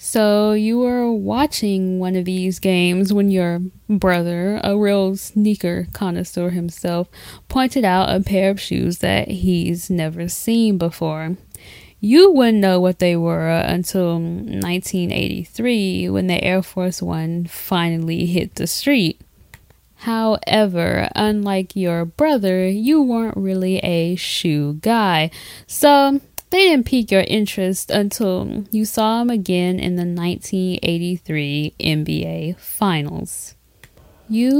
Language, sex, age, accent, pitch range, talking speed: English, female, 10-29, American, 175-210 Hz, 125 wpm